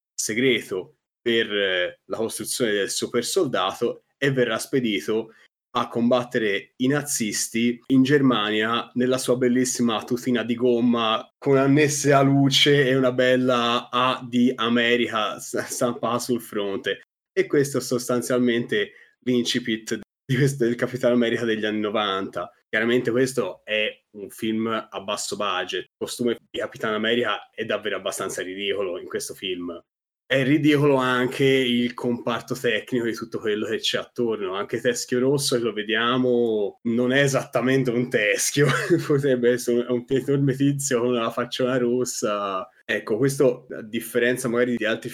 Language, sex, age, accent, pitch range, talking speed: Italian, male, 20-39, native, 110-130 Hz, 145 wpm